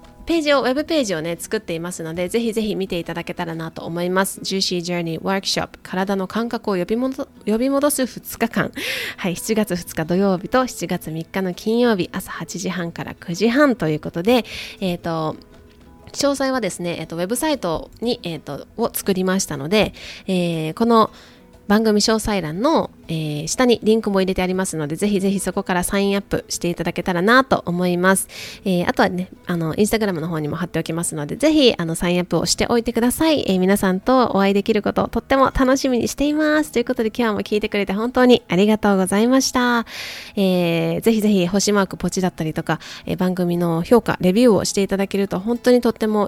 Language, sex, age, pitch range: Japanese, female, 20-39, 170-225 Hz